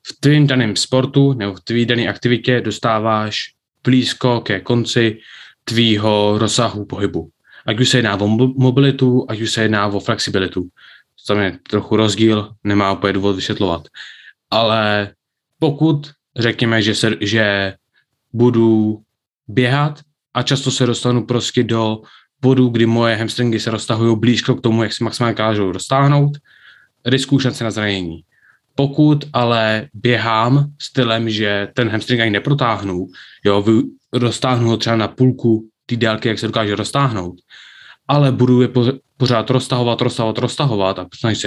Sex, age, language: male, 20-39, Czech